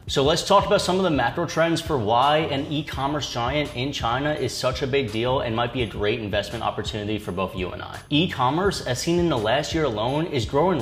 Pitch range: 120-160 Hz